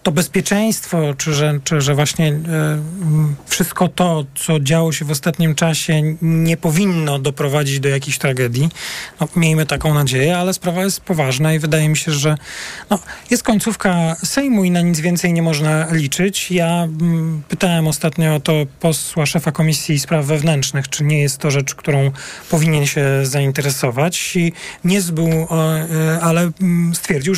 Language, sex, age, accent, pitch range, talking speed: Polish, male, 40-59, native, 140-170 Hz, 140 wpm